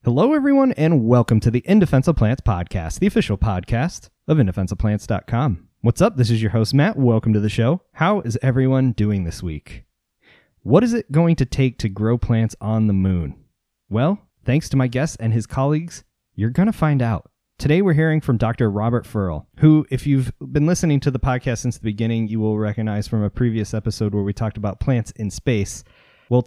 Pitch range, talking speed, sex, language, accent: 105-130 Hz, 200 wpm, male, English, American